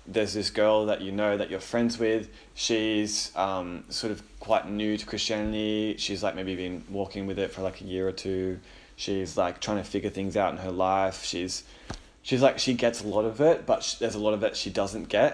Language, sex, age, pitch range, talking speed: English, male, 20-39, 95-110 Hz, 230 wpm